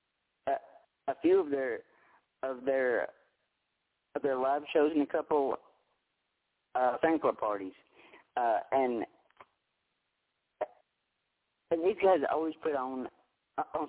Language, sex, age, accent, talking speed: English, male, 50-69, American, 110 wpm